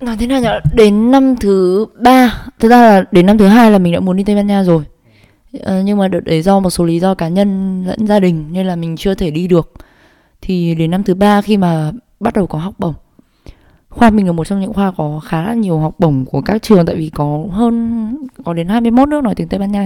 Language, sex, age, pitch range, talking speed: Vietnamese, female, 20-39, 170-220 Hz, 265 wpm